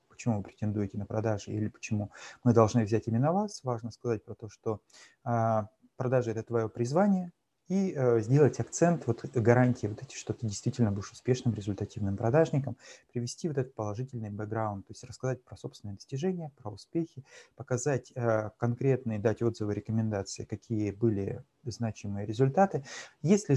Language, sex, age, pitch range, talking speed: Russian, male, 30-49, 110-130 Hz, 145 wpm